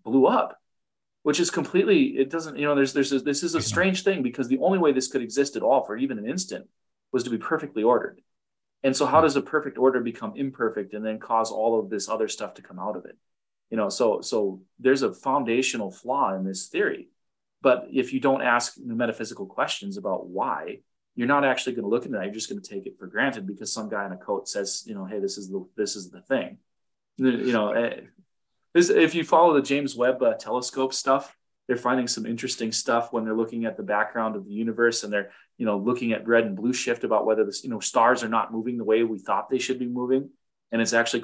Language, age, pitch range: English, 20-39, 110-140 Hz